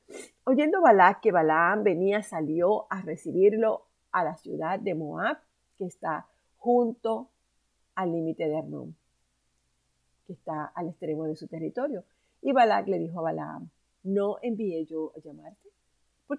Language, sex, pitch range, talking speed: Spanish, female, 155-205 Hz, 145 wpm